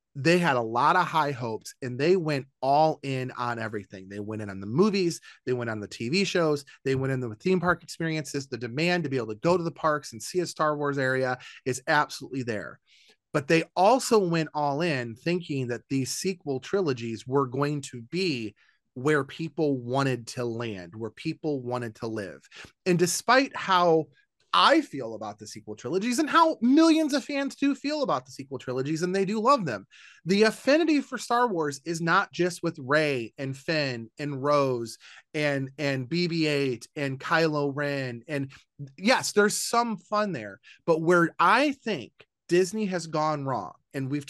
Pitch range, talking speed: 130-185 Hz, 190 wpm